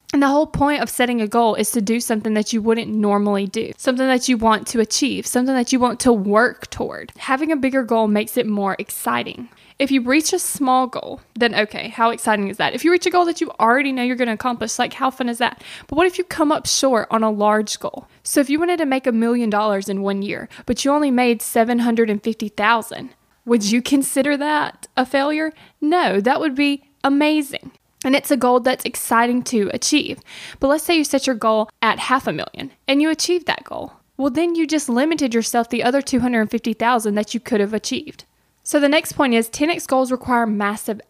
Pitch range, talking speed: 225-285 Hz, 225 wpm